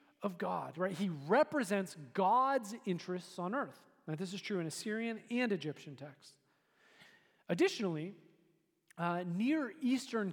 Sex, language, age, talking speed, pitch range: male, English, 40-59, 120 wpm, 195-260 Hz